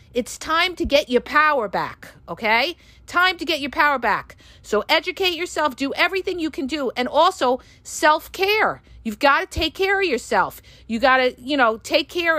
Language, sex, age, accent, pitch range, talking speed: English, female, 50-69, American, 245-335 Hz, 195 wpm